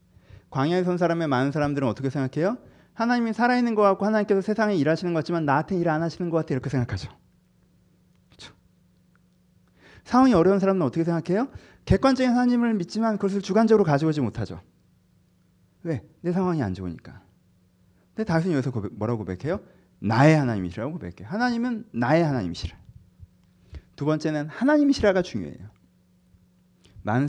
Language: Korean